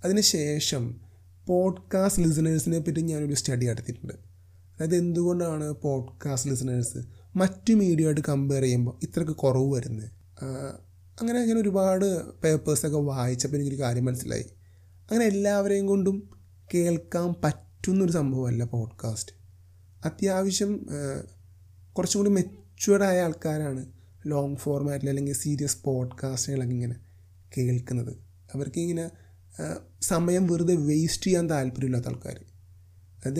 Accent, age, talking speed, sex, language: native, 30-49, 100 wpm, male, Malayalam